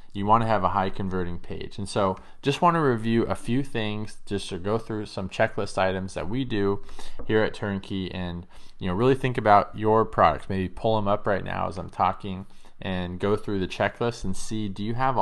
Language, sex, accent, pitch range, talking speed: English, male, American, 95-115 Hz, 225 wpm